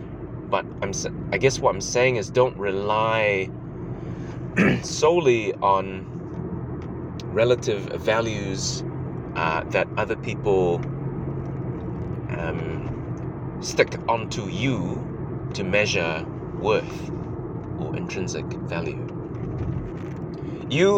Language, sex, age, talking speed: English, male, 30-49, 85 wpm